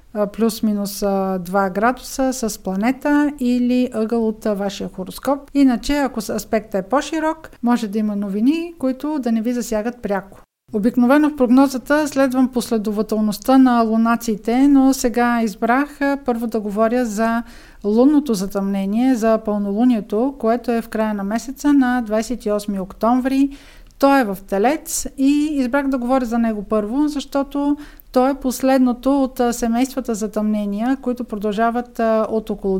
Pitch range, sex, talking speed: 215-260 Hz, female, 135 wpm